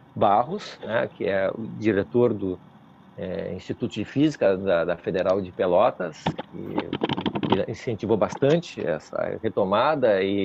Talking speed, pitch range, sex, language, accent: 115 wpm, 115-165 Hz, male, Portuguese, Brazilian